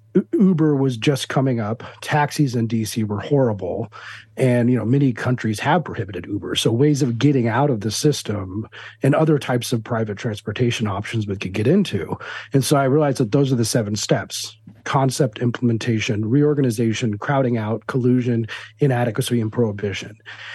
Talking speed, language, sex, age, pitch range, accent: 165 wpm, English, male, 40-59, 110-145 Hz, American